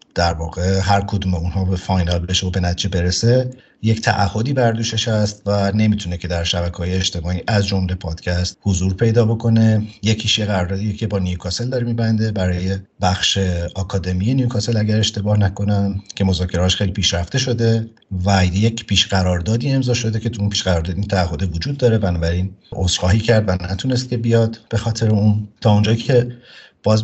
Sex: male